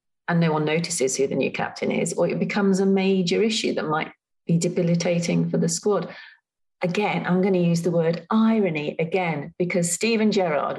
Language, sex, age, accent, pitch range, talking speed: English, female, 40-59, British, 165-210 Hz, 190 wpm